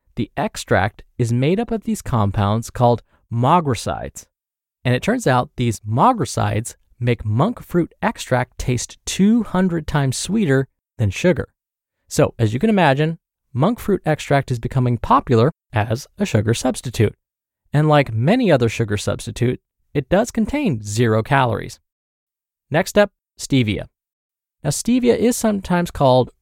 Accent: American